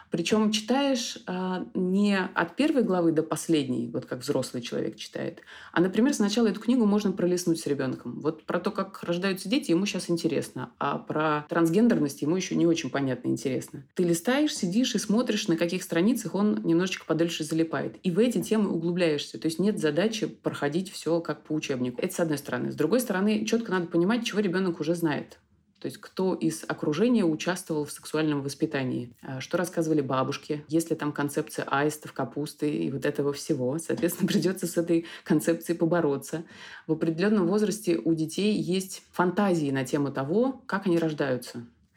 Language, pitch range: Russian, 150-190 Hz